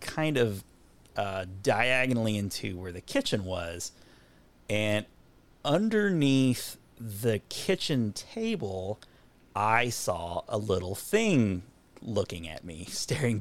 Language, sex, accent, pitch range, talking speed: English, male, American, 95-125 Hz, 105 wpm